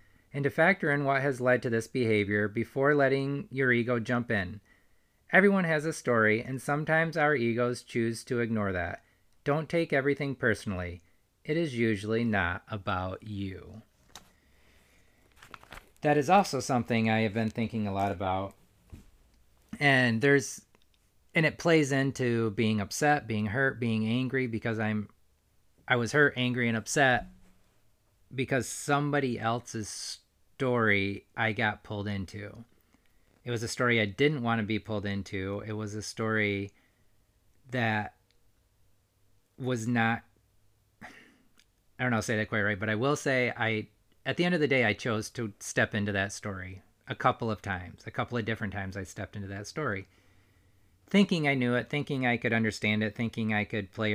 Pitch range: 100-125 Hz